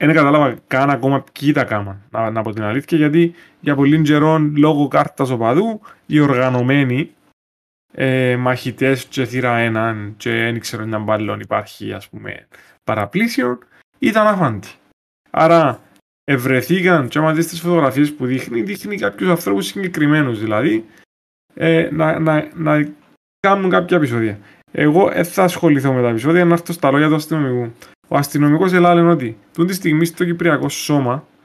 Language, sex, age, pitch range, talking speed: Greek, male, 20-39, 125-160 Hz, 140 wpm